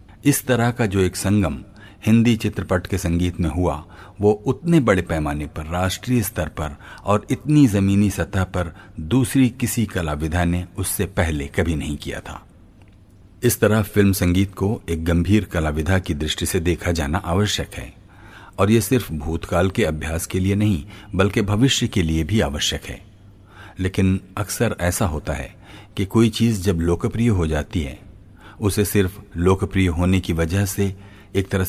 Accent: native